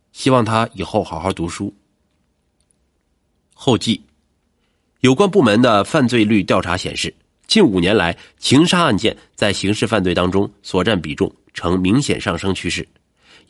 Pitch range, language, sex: 95-135 Hz, Chinese, male